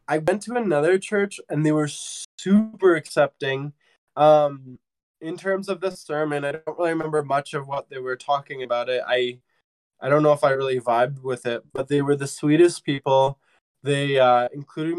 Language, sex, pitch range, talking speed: English, male, 125-155 Hz, 190 wpm